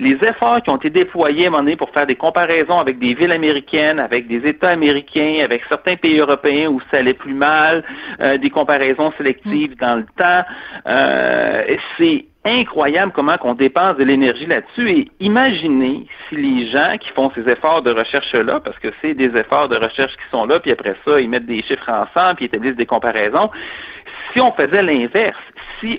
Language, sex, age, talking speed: French, male, 60-79, 195 wpm